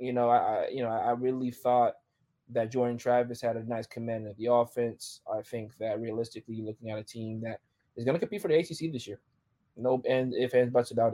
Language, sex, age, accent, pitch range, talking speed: English, male, 20-39, American, 120-135 Hz, 225 wpm